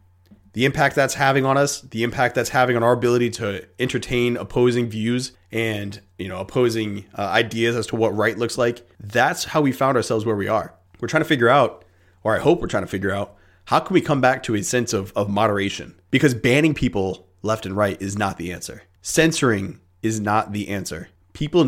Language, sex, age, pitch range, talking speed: English, male, 30-49, 100-125 Hz, 215 wpm